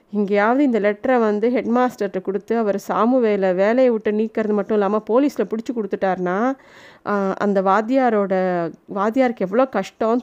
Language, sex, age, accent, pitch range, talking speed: Tamil, female, 30-49, native, 210-255 Hz, 135 wpm